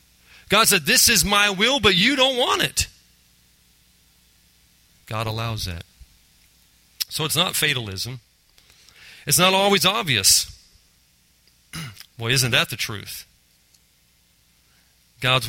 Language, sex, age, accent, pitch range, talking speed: English, male, 40-59, American, 95-145 Hz, 110 wpm